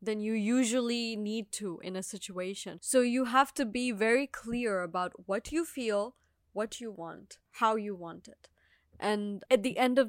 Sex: female